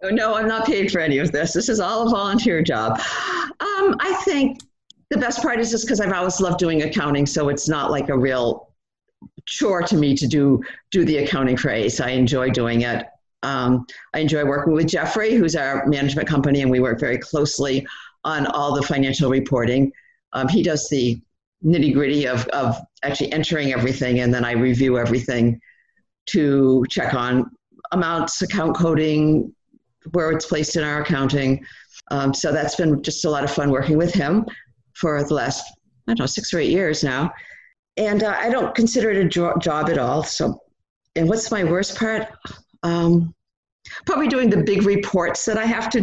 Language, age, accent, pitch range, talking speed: English, 50-69, American, 140-185 Hz, 190 wpm